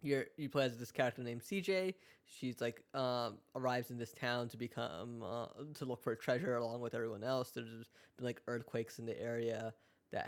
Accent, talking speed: American, 205 wpm